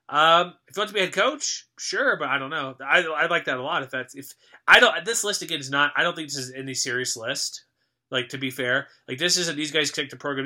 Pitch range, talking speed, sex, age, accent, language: 125-155 Hz, 280 wpm, male, 20-39, American, English